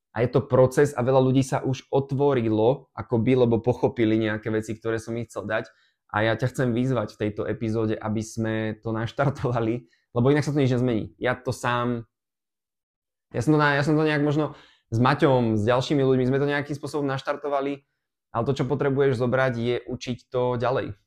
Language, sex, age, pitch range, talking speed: Slovak, male, 20-39, 110-130 Hz, 190 wpm